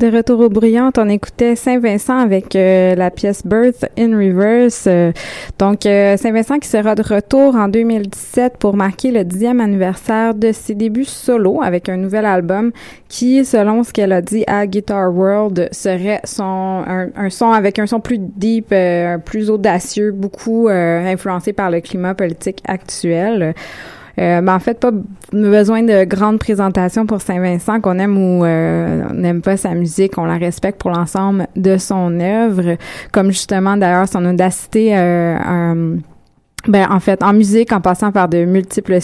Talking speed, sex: 175 wpm, female